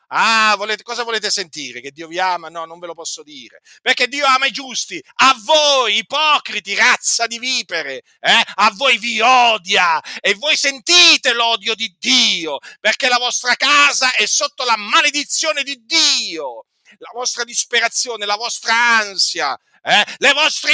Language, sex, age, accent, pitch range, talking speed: Italian, male, 50-69, native, 195-260 Hz, 160 wpm